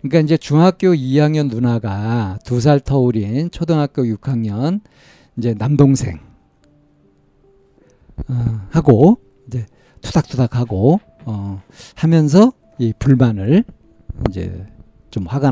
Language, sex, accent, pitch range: Korean, male, native, 115-150 Hz